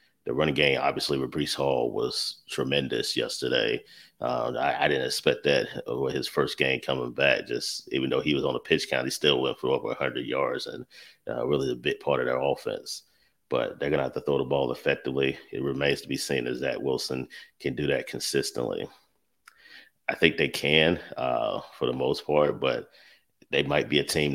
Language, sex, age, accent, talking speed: English, male, 30-49, American, 205 wpm